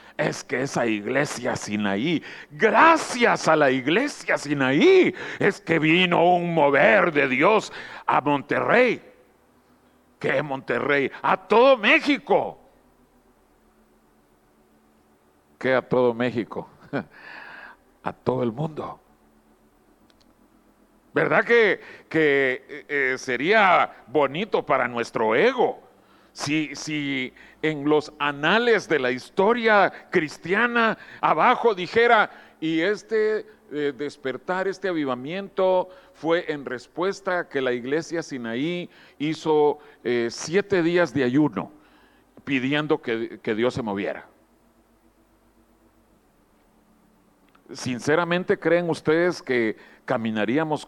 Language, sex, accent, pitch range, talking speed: Spanish, male, Mexican, 115-180 Hz, 95 wpm